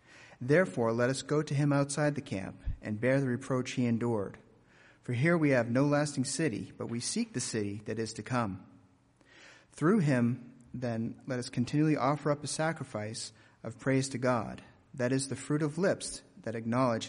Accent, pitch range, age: American, 115-140 Hz, 40-59